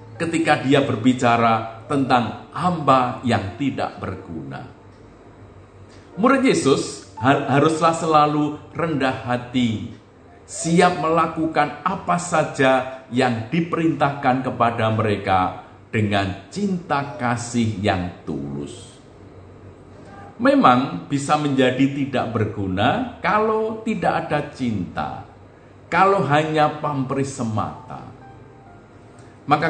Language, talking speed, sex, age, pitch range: Indonesian, 85 wpm, male, 50-69, 110-150 Hz